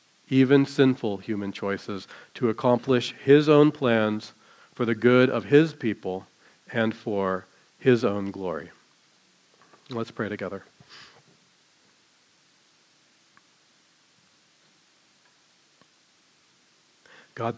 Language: English